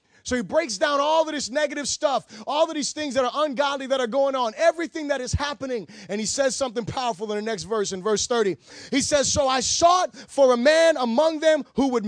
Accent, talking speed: American, 240 wpm